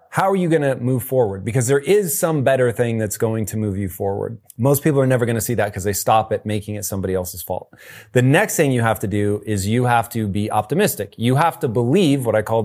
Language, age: English, 30-49